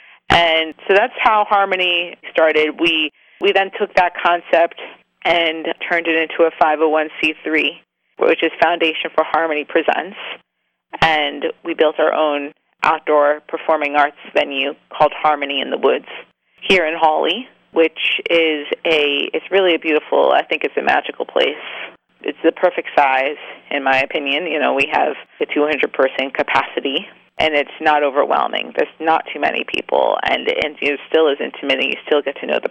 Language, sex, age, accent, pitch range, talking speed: English, female, 30-49, American, 145-170 Hz, 170 wpm